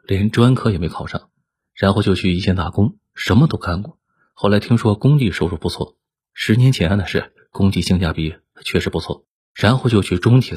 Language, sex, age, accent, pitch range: Chinese, male, 20-39, native, 90-110 Hz